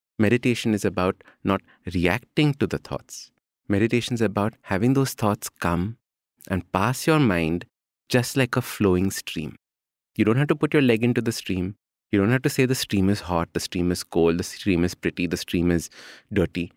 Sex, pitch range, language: male, 90-140 Hz, English